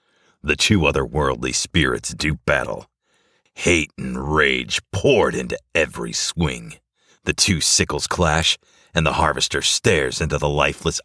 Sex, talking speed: male, 130 wpm